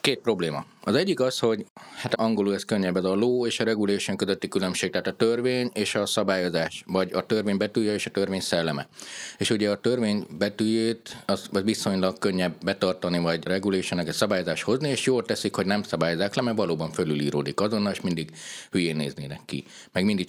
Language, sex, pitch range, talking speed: Hungarian, male, 85-105 Hz, 190 wpm